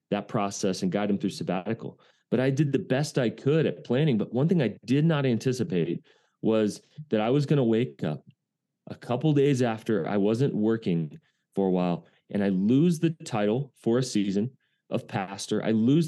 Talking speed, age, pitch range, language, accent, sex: 200 wpm, 30-49, 100-135 Hz, English, American, male